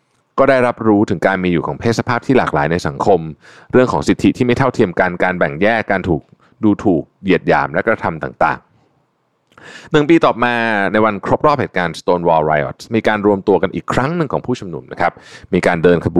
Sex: male